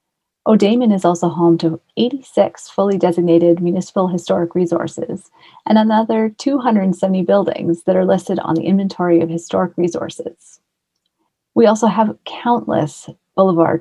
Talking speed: 125 wpm